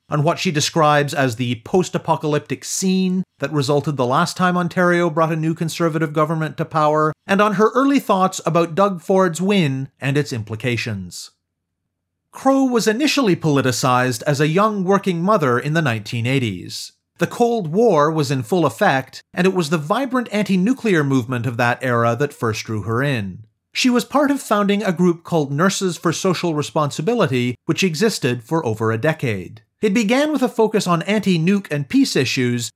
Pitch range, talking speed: 130-190 Hz, 175 wpm